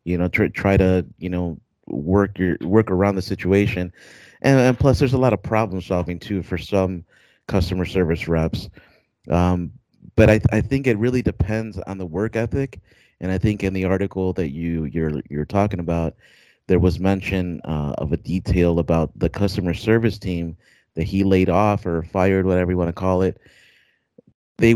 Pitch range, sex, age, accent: 85-100 Hz, male, 30-49, American